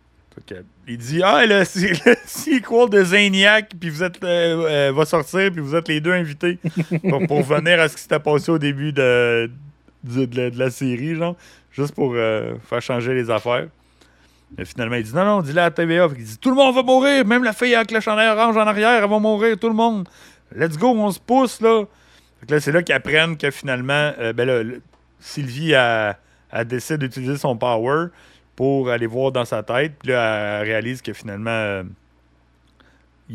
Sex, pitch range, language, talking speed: male, 100-160 Hz, French, 230 wpm